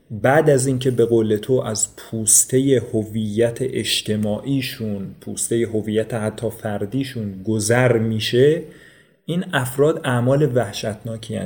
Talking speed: 105 wpm